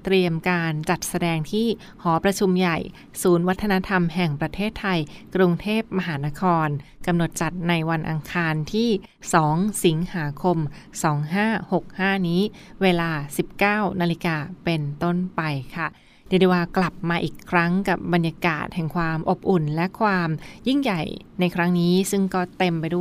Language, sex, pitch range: Thai, female, 165-190 Hz